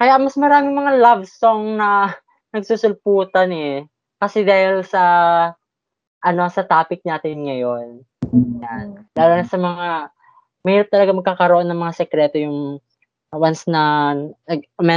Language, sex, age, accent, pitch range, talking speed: Filipino, female, 20-39, native, 150-200 Hz, 125 wpm